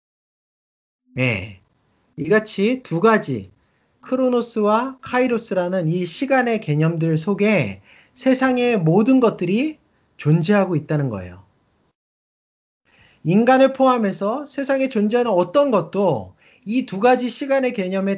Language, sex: Korean, male